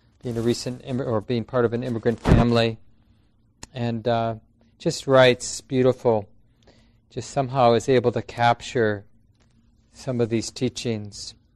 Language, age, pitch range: English, 40-59, 115-135 Hz